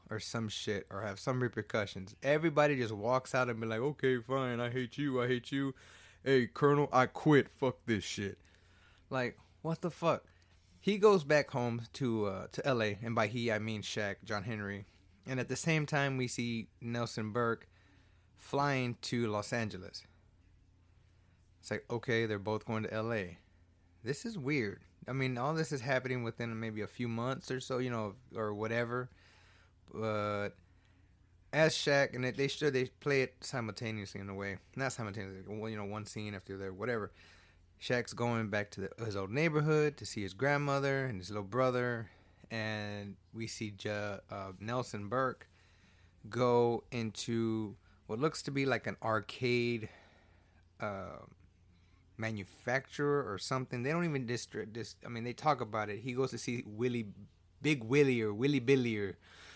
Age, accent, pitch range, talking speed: 20-39, American, 95-130 Hz, 175 wpm